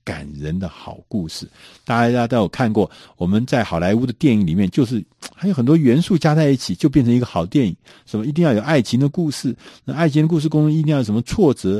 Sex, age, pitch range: male, 50-69, 95-150 Hz